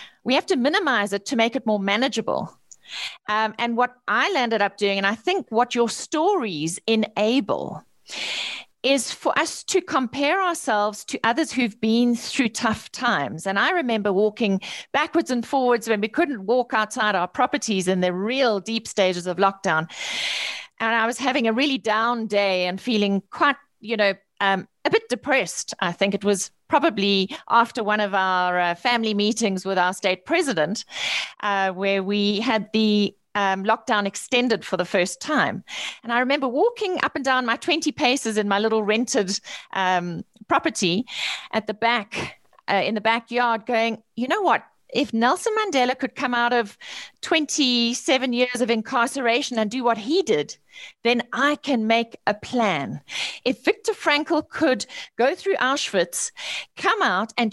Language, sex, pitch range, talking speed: English, female, 210-280 Hz, 170 wpm